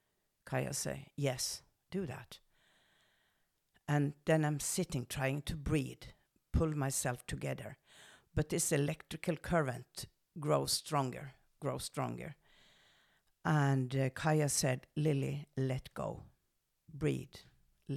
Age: 50-69